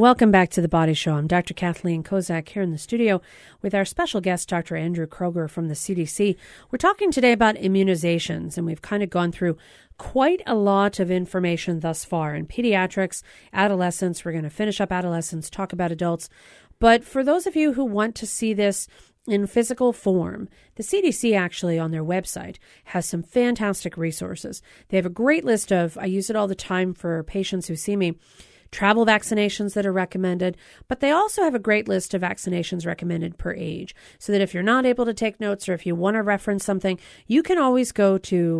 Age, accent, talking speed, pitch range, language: 40-59, American, 205 wpm, 175-215 Hz, English